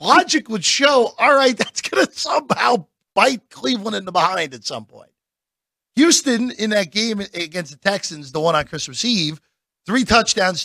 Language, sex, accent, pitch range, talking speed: English, male, American, 145-210 Hz, 175 wpm